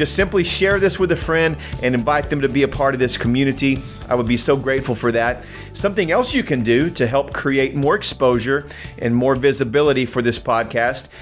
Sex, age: male, 40-59